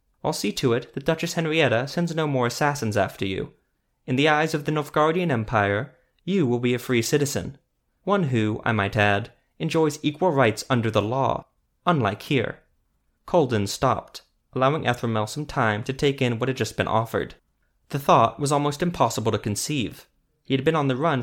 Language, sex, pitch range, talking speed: English, male, 110-150 Hz, 185 wpm